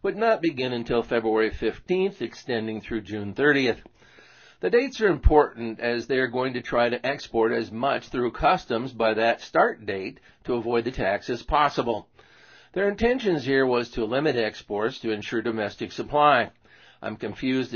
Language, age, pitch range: English, 50-69, 110-130 Hz